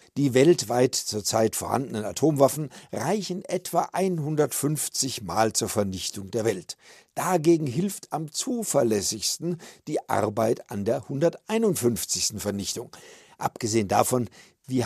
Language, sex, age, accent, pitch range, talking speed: German, male, 50-69, German, 120-175 Hz, 105 wpm